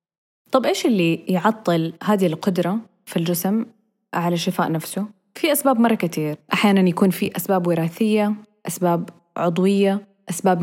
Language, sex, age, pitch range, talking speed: English, female, 20-39, 175-210 Hz, 130 wpm